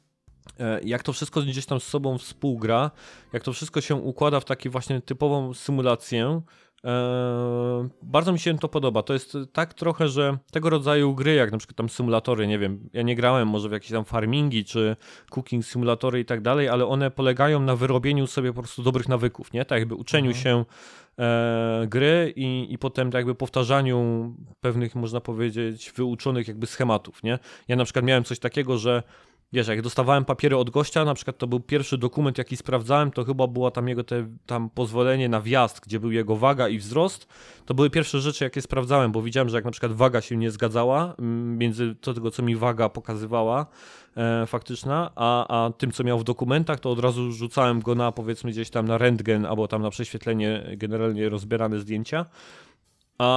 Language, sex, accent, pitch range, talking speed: Polish, male, native, 115-135 Hz, 185 wpm